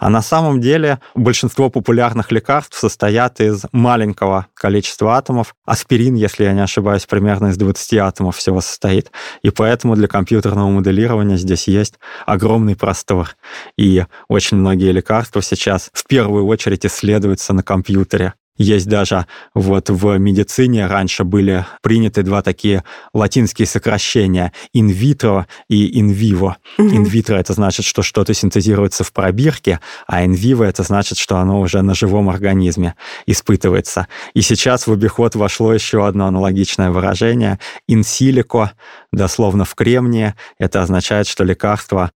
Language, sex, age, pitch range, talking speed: Russian, male, 20-39, 95-110 Hz, 140 wpm